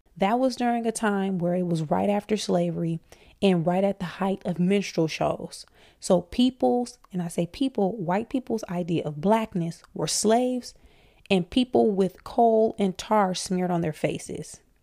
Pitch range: 180-225 Hz